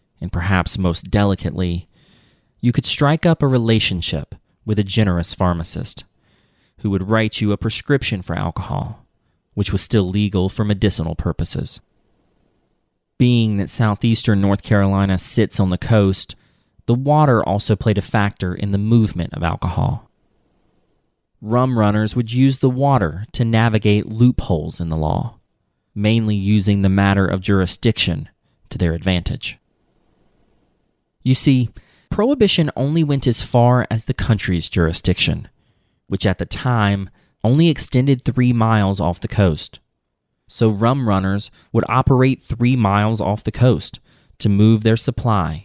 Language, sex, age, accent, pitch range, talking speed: English, male, 30-49, American, 95-120 Hz, 140 wpm